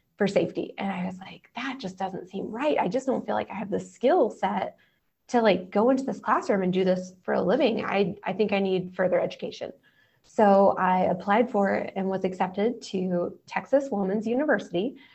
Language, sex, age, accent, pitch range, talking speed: English, female, 20-39, American, 185-220 Hz, 200 wpm